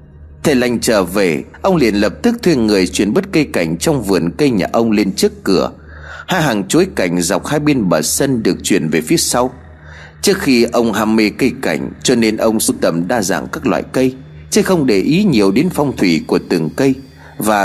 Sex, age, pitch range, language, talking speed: male, 30-49, 85-140 Hz, Vietnamese, 220 wpm